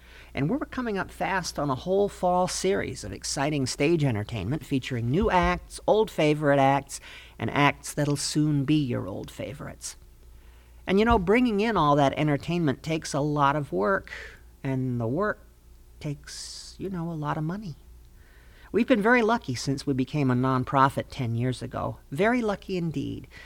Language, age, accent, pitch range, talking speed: English, 50-69, American, 125-175 Hz, 170 wpm